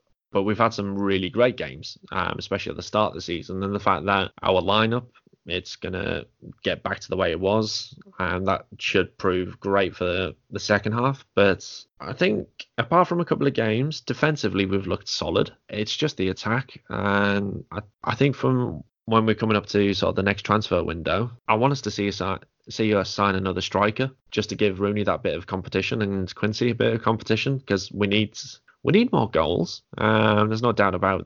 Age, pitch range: 10-29, 95-120 Hz